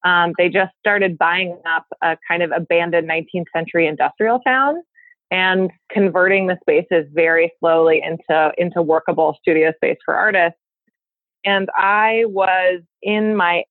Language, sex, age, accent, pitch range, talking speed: English, female, 20-39, American, 175-225 Hz, 140 wpm